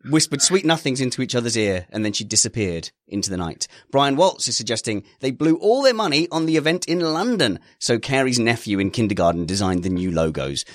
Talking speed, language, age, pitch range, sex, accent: 205 wpm, English, 30-49, 100-140 Hz, male, British